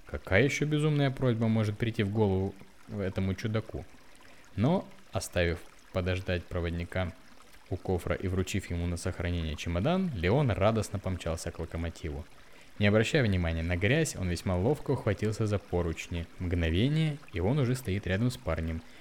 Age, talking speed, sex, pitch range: 20-39, 145 wpm, male, 90-120 Hz